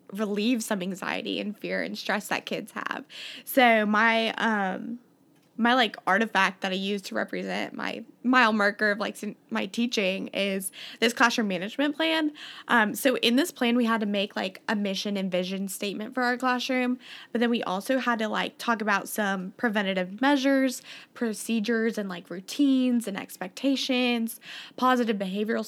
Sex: female